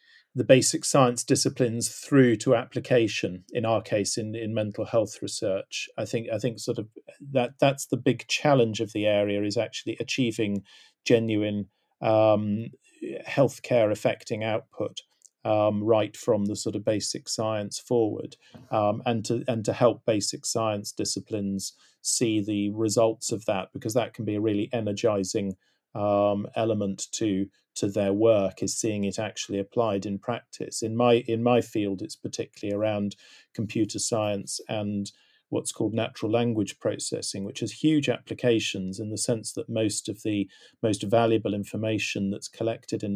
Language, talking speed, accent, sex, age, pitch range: English, 155 wpm, British, male, 40-59, 100-115 Hz